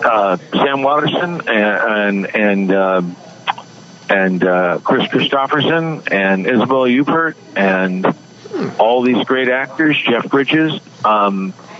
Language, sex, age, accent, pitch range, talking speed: English, male, 50-69, American, 100-135 Hz, 110 wpm